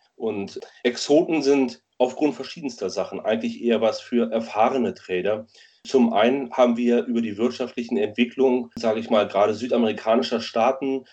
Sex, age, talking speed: male, 30-49, 140 wpm